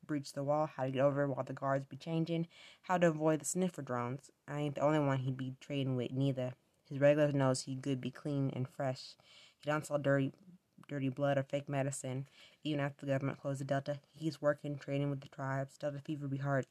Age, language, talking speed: 20-39, English, 225 wpm